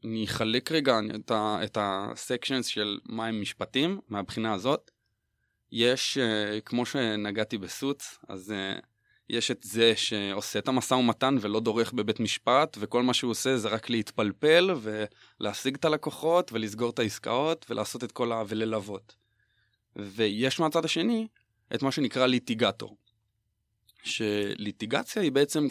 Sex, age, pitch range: male, 20-39, 105-125 Hz